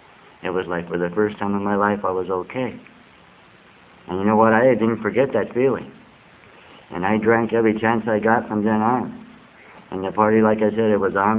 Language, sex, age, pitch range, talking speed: English, male, 60-79, 100-115 Hz, 215 wpm